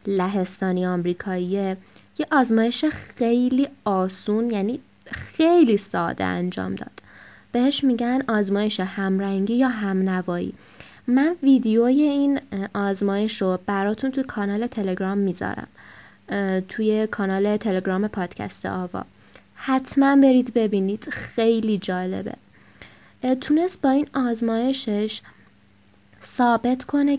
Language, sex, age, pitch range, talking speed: Persian, female, 20-39, 195-260 Hz, 95 wpm